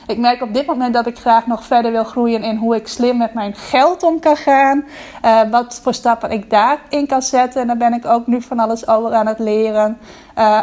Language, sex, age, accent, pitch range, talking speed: Dutch, female, 20-39, Dutch, 225-255 Hz, 250 wpm